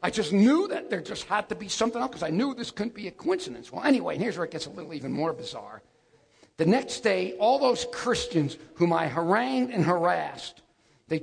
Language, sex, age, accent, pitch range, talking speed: English, male, 50-69, American, 155-225 Hz, 230 wpm